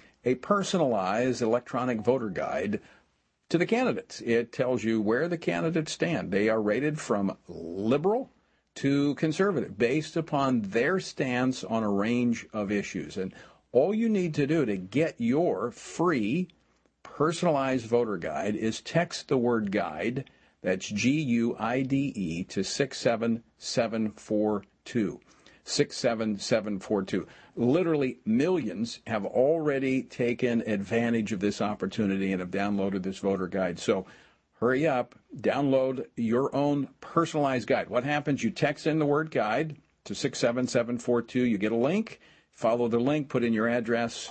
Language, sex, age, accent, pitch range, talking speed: English, male, 50-69, American, 110-155 Hz, 140 wpm